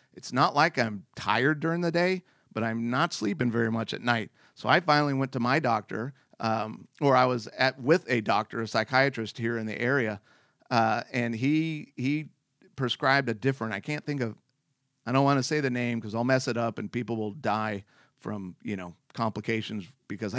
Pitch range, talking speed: 115-140 Hz, 205 wpm